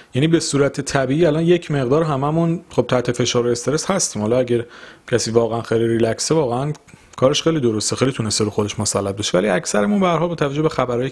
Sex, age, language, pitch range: male, 40-59, Persian, 110-140 Hz